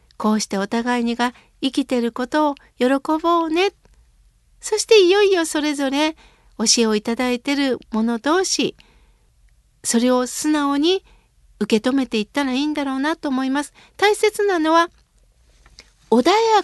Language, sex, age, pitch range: Japanese, female, 60-79, 225-320 Hz